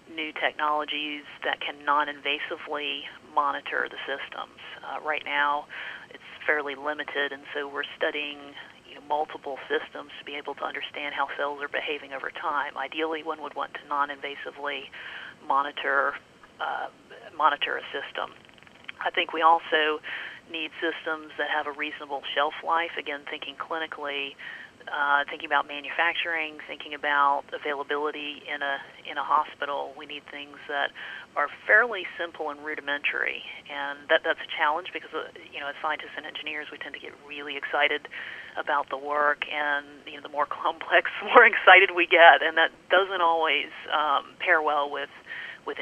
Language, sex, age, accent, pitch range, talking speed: English, female, 40-59, American, 145-160 Hz, 160 wpm